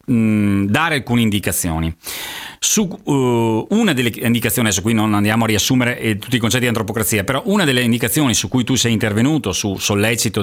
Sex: male